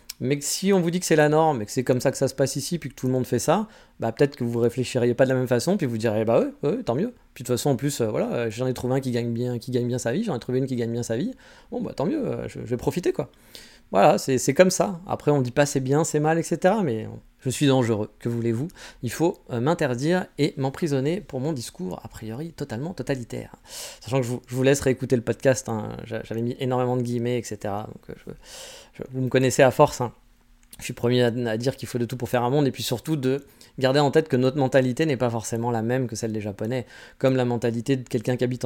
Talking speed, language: 280 wpm, French